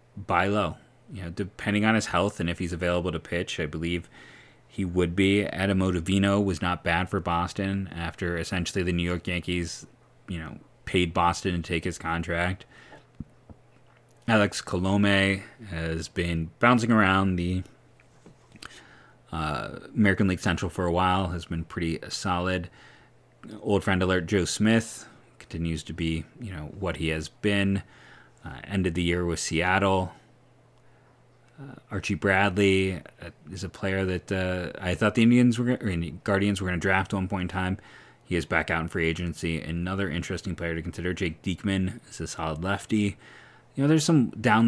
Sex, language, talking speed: male, English, 165 wpm